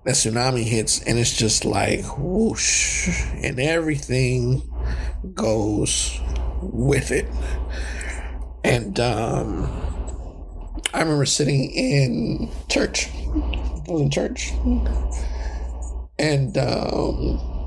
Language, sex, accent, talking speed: English, male, American, 90 wpm